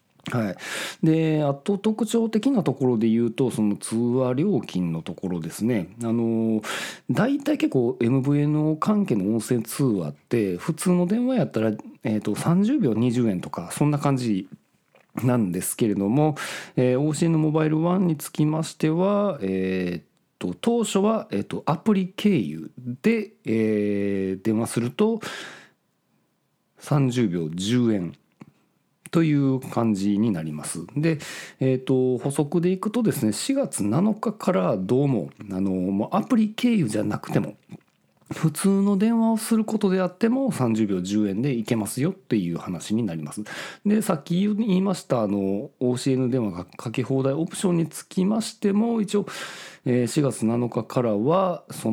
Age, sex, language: 40-59, male, Japanese